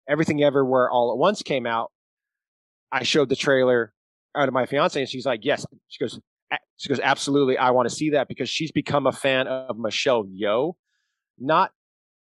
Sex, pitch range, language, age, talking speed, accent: male, 115-145 Hz, English, 30-49, 190 wpm, American